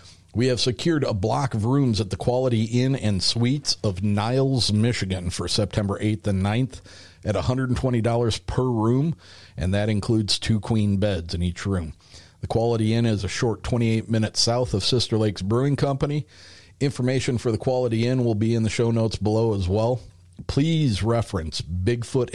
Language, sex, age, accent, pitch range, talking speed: English, male, 50-69, American, 95-120 Hz, 175 wpm